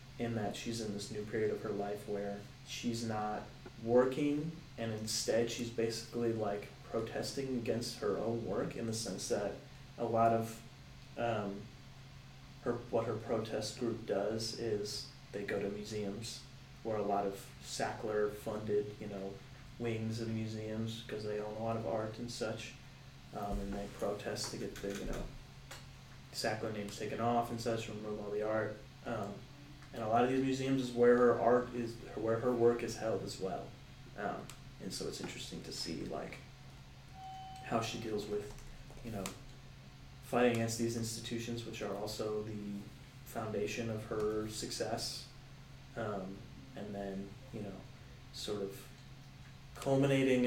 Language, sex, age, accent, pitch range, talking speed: English, male, 30-49, American, 105-130 Hz, 160 wpm